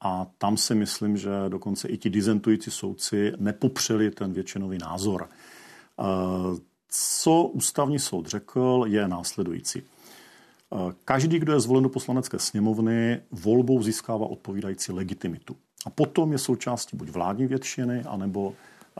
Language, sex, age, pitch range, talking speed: Czech, male, 50-69, 95-125 Hz, 125 wpm